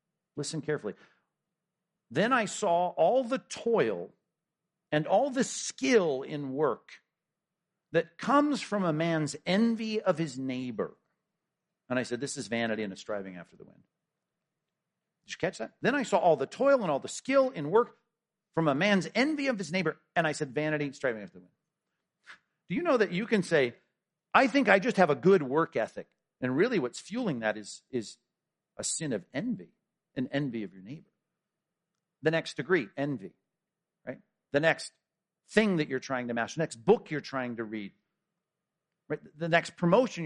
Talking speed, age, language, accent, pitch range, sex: 185 wpm, 50-69, English, American, 135-200 Hz, male